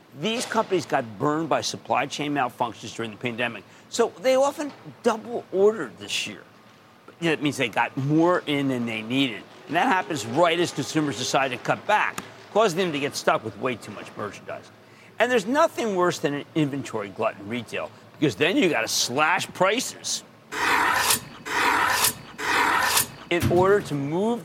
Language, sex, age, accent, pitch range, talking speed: English, male, 50-69, American, 135-220 Hz, 170 wpm